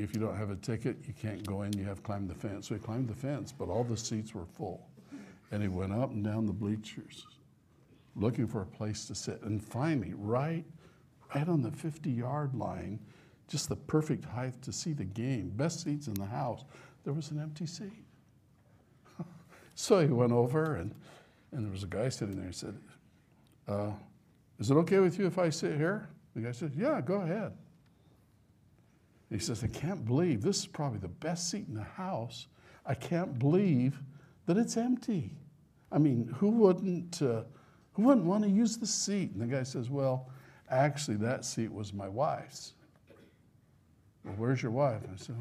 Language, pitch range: English, 110-155 Hz